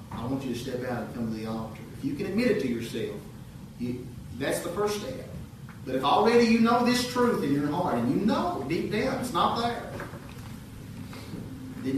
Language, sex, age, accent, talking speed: English, male, 40-59, American, 205 wpm